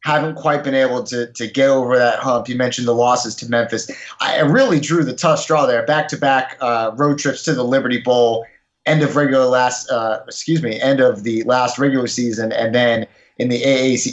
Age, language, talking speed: 30-49, English, 210 wpm